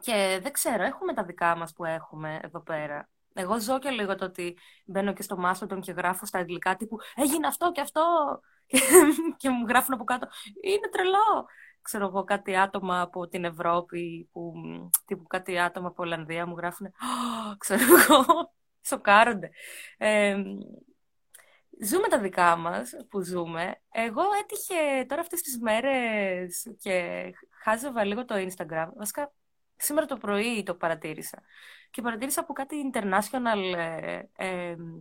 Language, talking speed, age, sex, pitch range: Greek, 145 wpm, 20-39, female, 180-270 Hz